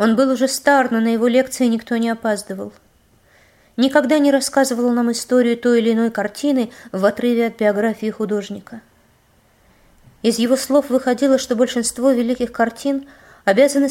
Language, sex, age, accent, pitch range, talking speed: Russian, female, 20-39, native, 200-250 Hz, 145 wpm